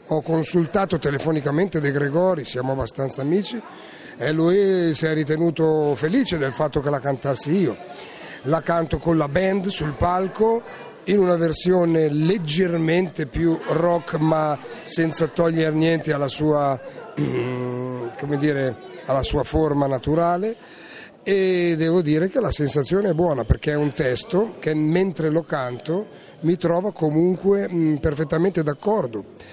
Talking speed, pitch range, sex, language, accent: 135 wpm, 150-175 Hz, male, Italian, native